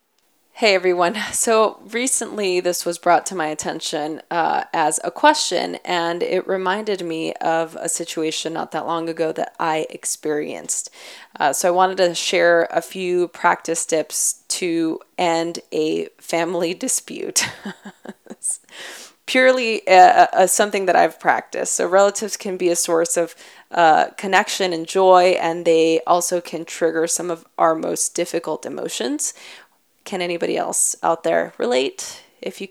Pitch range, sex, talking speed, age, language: 165-220 Hz, female, 145 wpm, 20-39, English